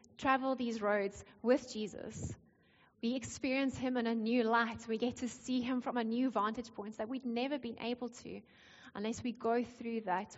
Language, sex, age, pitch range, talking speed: English, female, 20-39, 210-255 Hz, 190 wpm